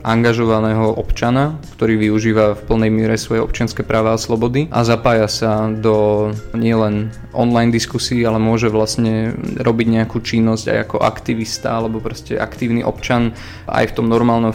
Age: 20-39